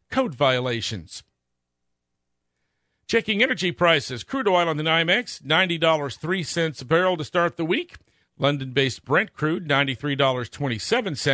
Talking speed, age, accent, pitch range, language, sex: 105 wpm, 50-69, American, 115-175 Hz, English, male